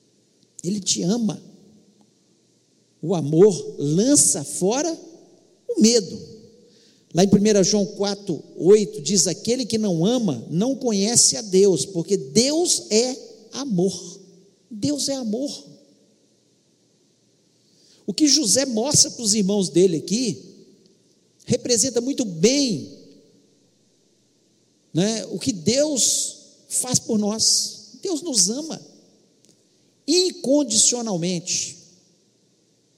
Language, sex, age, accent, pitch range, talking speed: Portuguese, male, 50-69, Brazilian, 185-250 Hz, 95 wpm